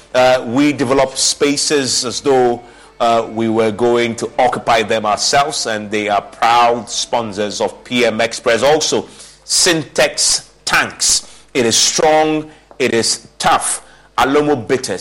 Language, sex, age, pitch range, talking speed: English, male, 30-49, 110-130 Hz, 130 wpm